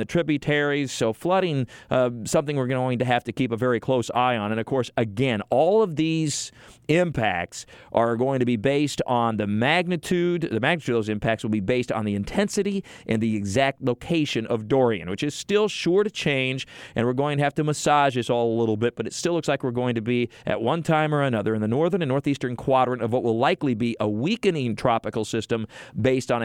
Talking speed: 225 wpm